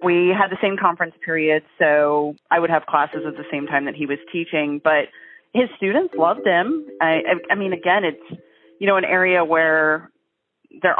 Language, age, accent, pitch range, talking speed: English, 30-49, American, 155-185 Hz, 190 wpm